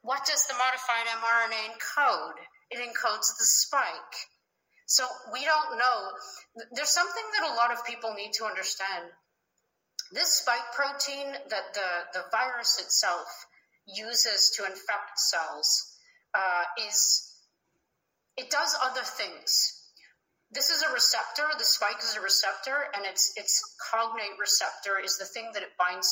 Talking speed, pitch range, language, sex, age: 140 wpm, 190-255 Hz, English, female, 30-49